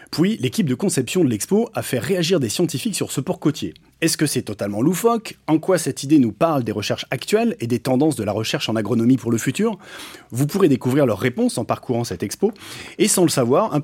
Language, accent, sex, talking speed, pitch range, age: French, French, male, 235 wpm, 120-165 Hz, 30-49